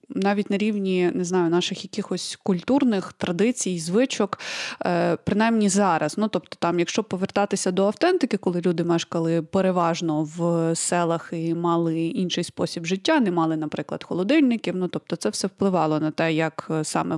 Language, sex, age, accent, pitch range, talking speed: Ukrainian, female, 20-39, native, 170-210 Hz, 150 wpm